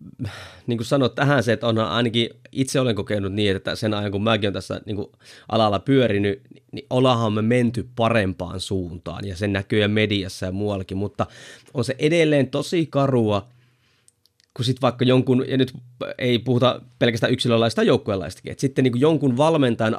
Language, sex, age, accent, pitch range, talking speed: Finnish, male, 30-49, native, 115-145 Hz, 170 wpm